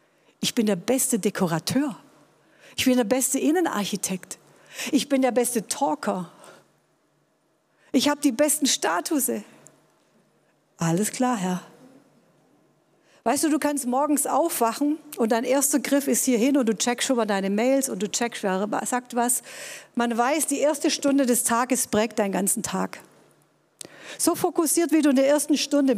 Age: 50-69